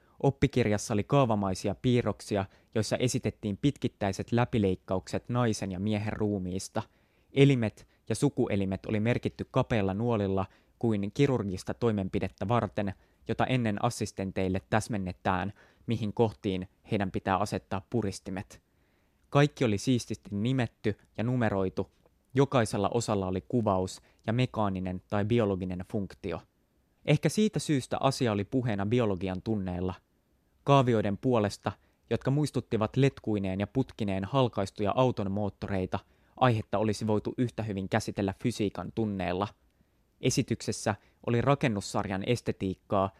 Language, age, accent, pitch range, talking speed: Finnish, 20-39, native, 95-120 Hz, 110 wpm